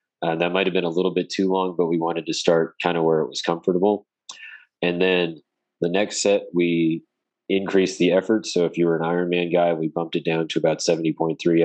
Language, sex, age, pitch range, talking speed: English, male, 20-39, 80-90 Hz, 220 wpm